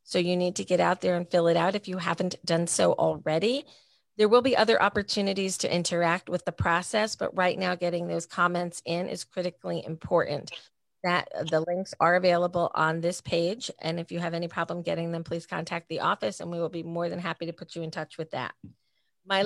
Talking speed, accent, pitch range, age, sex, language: 220 wpm, American, 165-190 Hz, 40-59, female, English